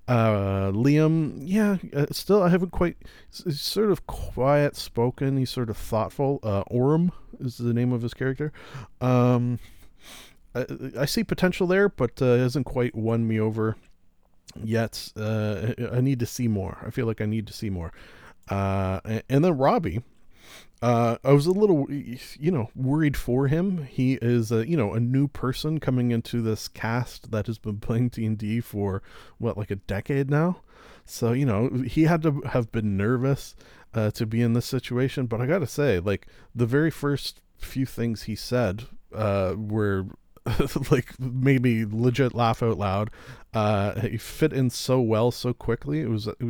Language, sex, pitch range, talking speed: English, male, 110-135 Hz, 180 wpm